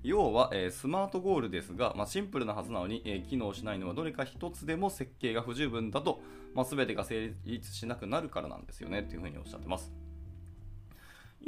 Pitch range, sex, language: 85-130 Hz, male, Japanese